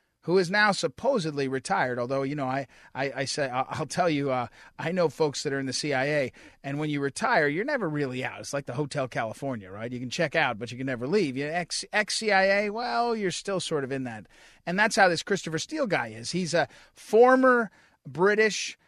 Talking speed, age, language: 230 wpm, 40-59, English